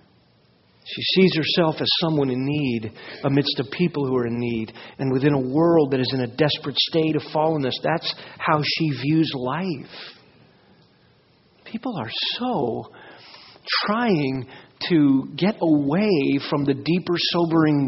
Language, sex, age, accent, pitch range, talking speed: English, male, 50-69, American, 140-210 Hz, 140 wpm